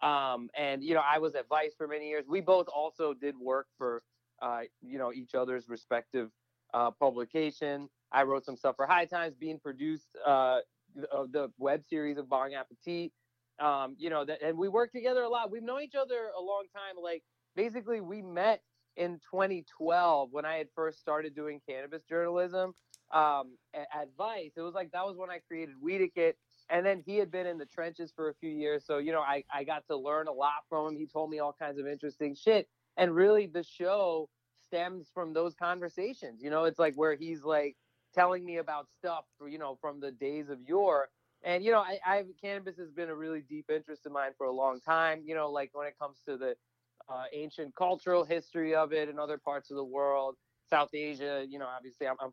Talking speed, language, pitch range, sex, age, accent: 215 wpm, English, 140-175 Hz, male, 30-49, American